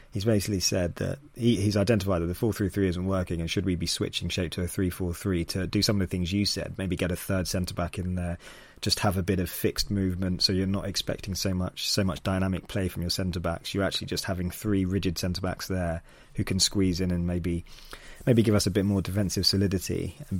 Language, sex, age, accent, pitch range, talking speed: English, male, 20-39, British, 90-105 Hz, 240 wpm